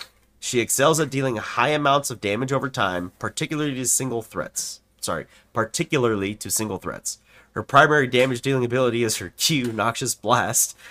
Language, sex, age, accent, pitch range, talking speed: English, male, 30-49, American, 100-130 Hz, 160 wpm